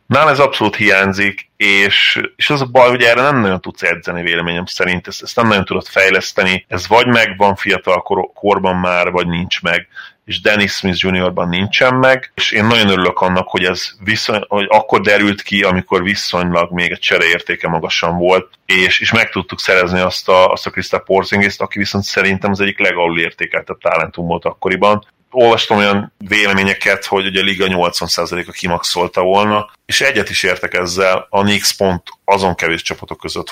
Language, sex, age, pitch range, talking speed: Hungarian, male, 30-49, 90-100 Hz, 180 wpm